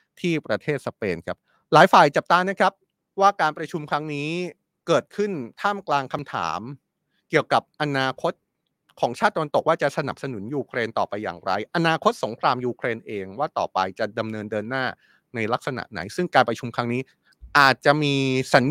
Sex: male